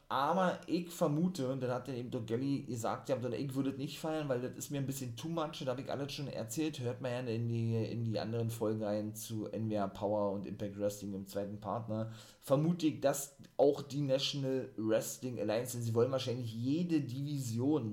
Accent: German